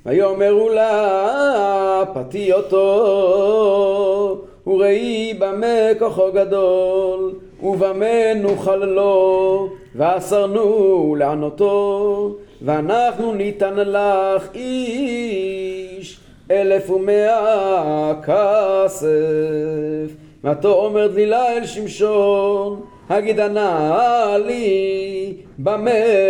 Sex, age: male, 40-59